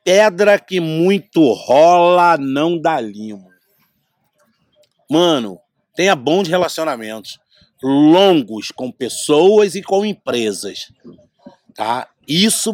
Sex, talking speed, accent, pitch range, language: male, 85 wpm, Brazilian, 135-195 Hz, Portuguese